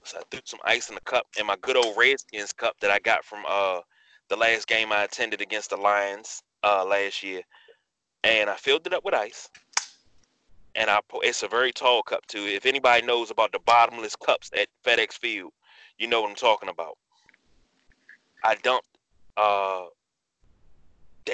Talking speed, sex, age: 180 wpm, male, 30-49